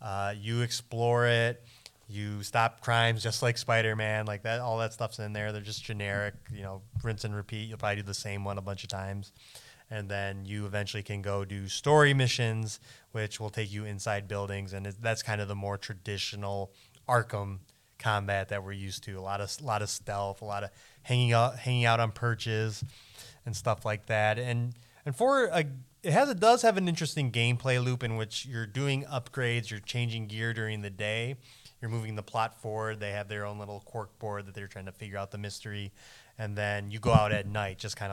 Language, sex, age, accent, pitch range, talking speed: English, male, 20-39, American, 105-120 Hz, 215 wpm